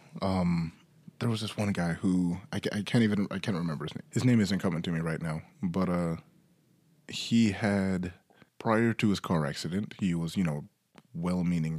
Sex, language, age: male, English, 20-39